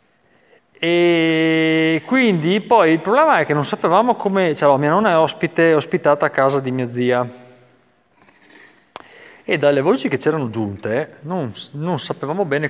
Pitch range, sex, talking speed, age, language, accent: 110-165 Hz, male, 150 wpm, 30-49, Italian, native